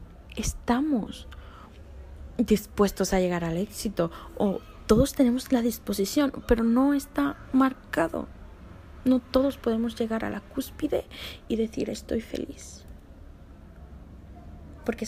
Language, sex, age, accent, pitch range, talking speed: Spanish, female, 20-39, Spanish, 150-230 Hz, 105 wpm